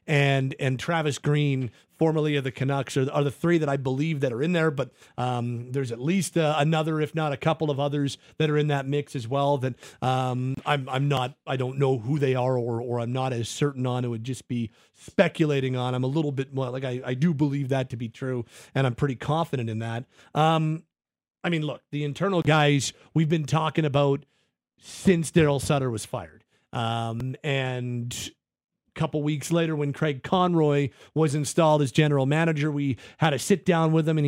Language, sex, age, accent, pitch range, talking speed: English, male, 40-59, American, 135-160 Hz, 210 wpm